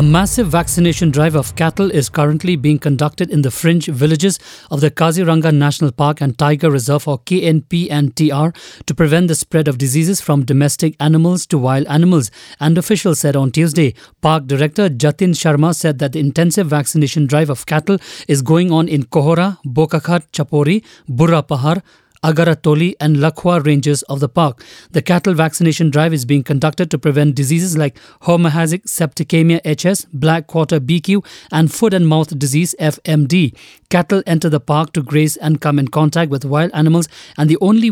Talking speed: 170 wpm